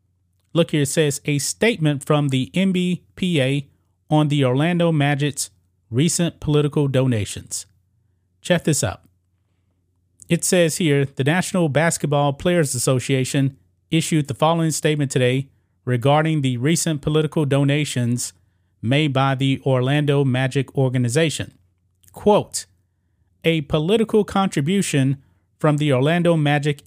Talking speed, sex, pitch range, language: 115 wpm, male, 100-160 Hz, English